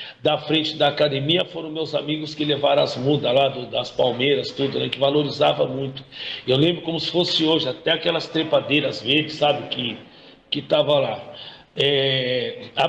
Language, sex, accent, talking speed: Portuguese, male, Brazilian, 170 wpm